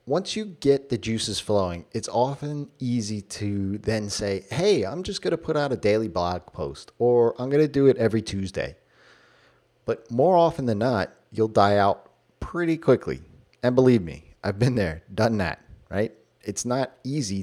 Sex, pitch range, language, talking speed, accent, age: male, 100-135 Hz, English, 185 wpm, American, 30-49